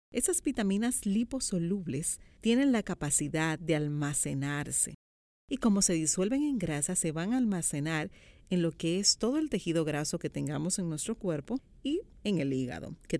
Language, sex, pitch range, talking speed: Spanish, female, 150-205 Hz, 165 wpm